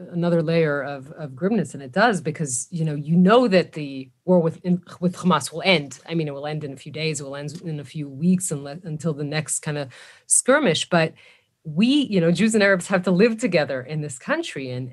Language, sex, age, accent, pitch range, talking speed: English, female, 30-49, American, 155-190 Hz, 235 wpm